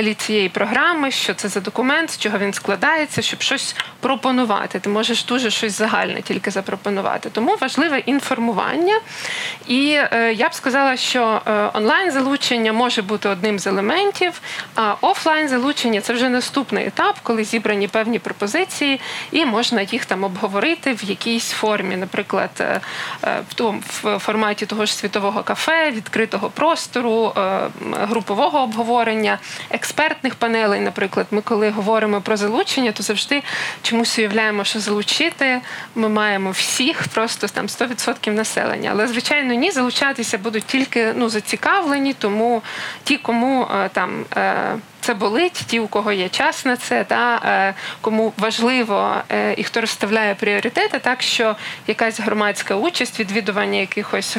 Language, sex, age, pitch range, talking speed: Ukrainian, female, 20-39, 210-260 Hz, 140 wpm